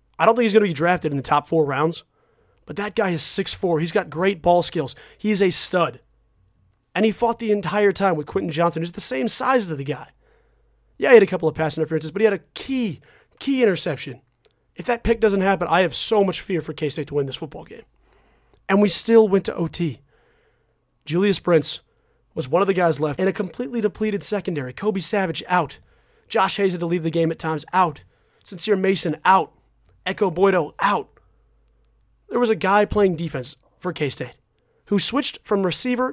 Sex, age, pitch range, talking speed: male, 30-49, 155-200 Hz, 210 wpm